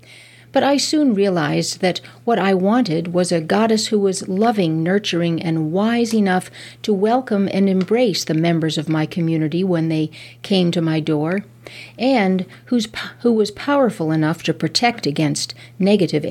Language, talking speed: English, 155 wpm